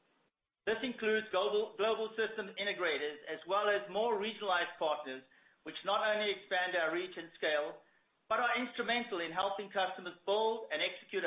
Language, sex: English, male